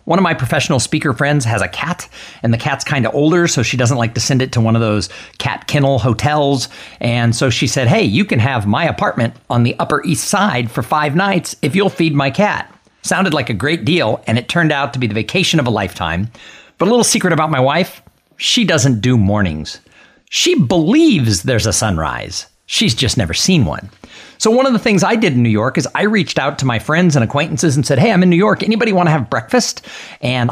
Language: English